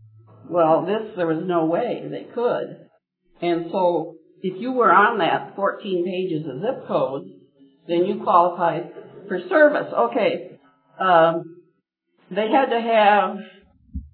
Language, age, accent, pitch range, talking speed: English, 60-79, American, 170-205 Hz, 130 wpm